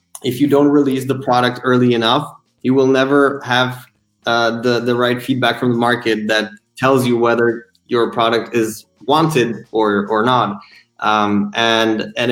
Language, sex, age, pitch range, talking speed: Italian, male, 20-39, 110-125 Hz, 165 wpm